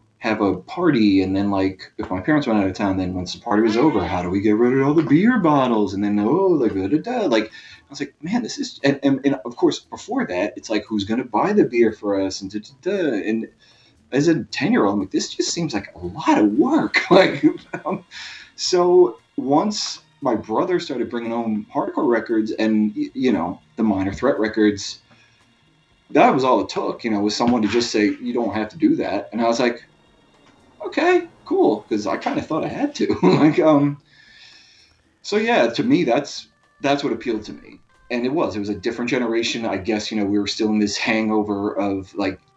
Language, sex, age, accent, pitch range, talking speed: English, male, 30-49, American, 105-140 Hz, 225 wpm